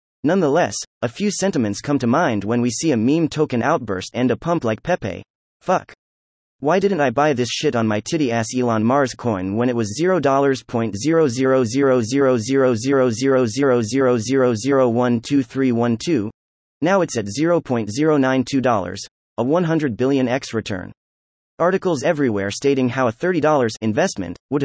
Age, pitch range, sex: 30-49, 115-155 Hz, male